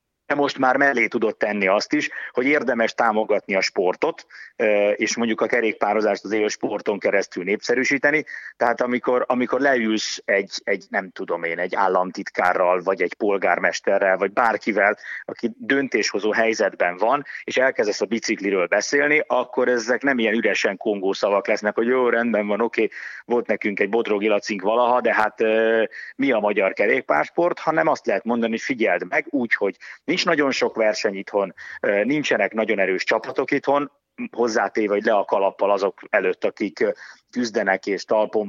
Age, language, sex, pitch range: 30-49, Hungarian, male, 105-130 Hz